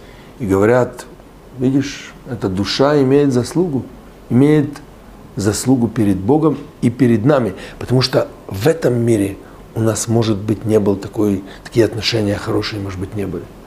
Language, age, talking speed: Russian, 60-79, 145 wpm